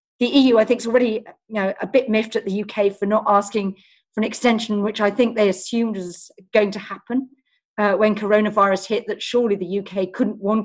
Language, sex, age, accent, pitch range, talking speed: English, female, 40-59, British, 195-245 Hz, 210 wpm